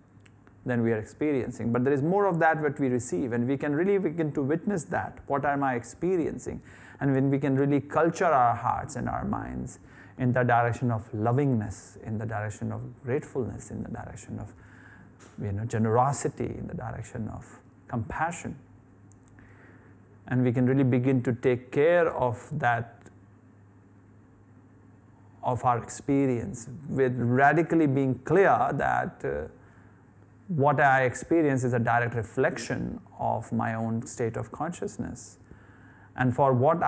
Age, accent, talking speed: 30-49, Indian, 145 wpm